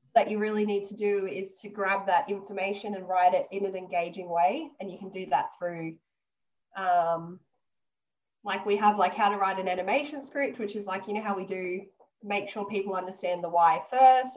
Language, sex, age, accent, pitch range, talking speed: English, female, 10-29, Australian, 185-225 Hz, 210 wpm